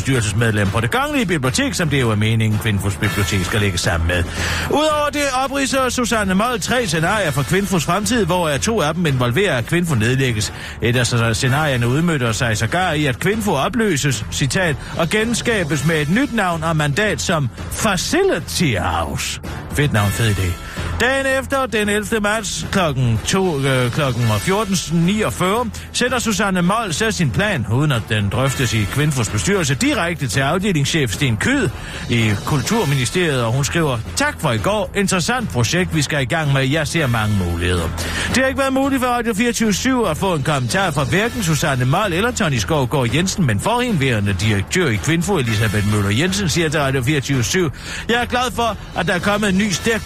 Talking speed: 180 wpm